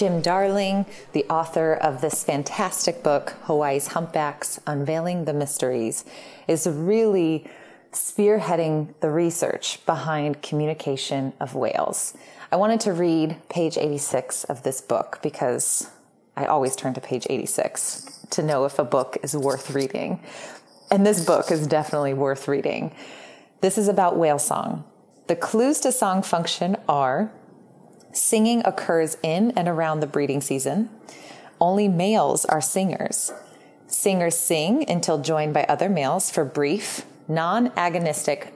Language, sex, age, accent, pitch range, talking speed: English, female, 30-49, American, 150-190 Hz, 135 wpm